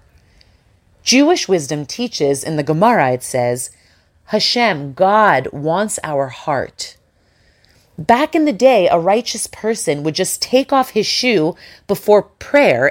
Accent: American